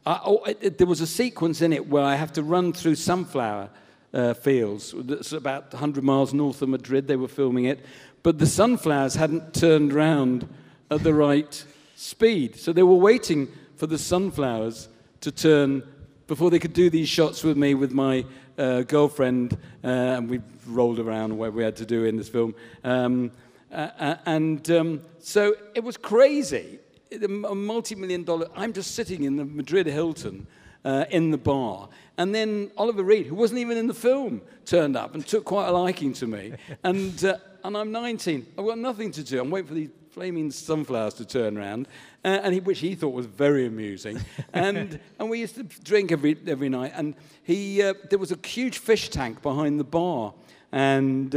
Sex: male